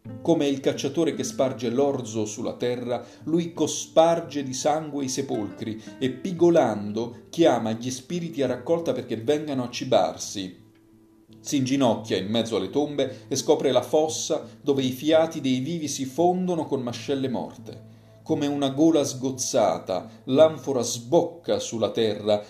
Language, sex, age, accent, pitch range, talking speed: Italian, male, 40-59, native, 110-145 Hz, 140 wpm